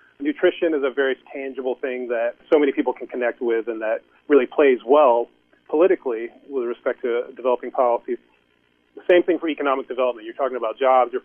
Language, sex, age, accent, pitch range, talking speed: English, male, 40-59, American, 125-170 Hz, 185 wpm